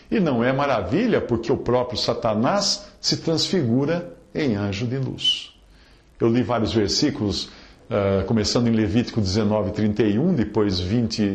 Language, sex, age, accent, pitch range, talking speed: English, male, 50-69, Brazilian, 110-150 Hz, 130 wpm